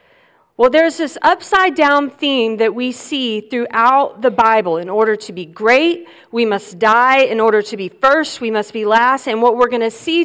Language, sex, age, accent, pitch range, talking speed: English, female, 40-59, American, 220-275 Hz, 200 wpm